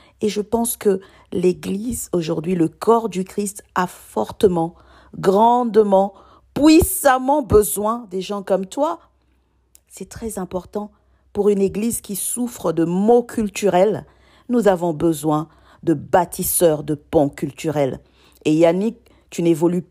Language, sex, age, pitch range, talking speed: French, female, 50-69, 150-215 Hz, 125 wpm